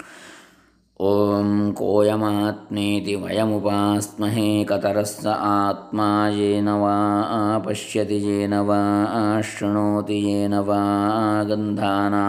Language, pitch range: Kannada, 100-110 Hz